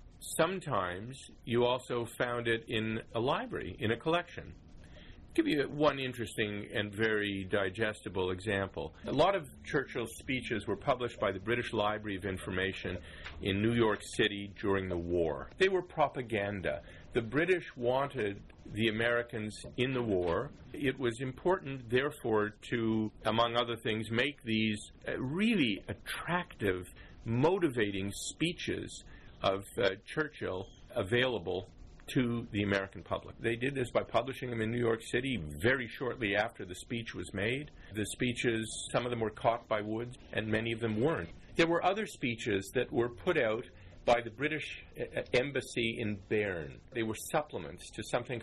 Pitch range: 100-125 Hz